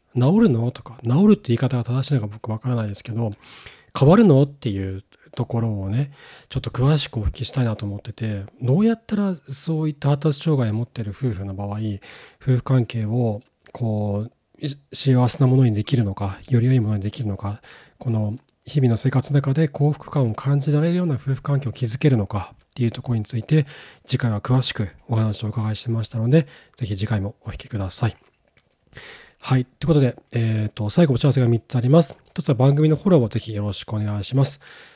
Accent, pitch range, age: native, 110-140 Hz, 40-59